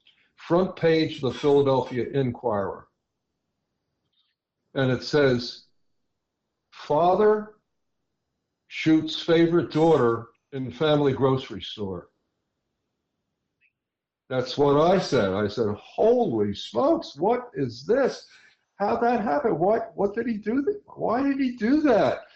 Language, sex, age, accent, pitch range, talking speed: English, male, 60-79, American, 140-195 Hz, 115 wpm